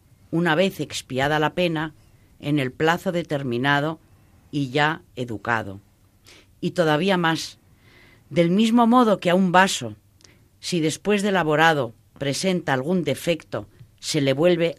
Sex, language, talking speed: female, Spanish, 130 wpm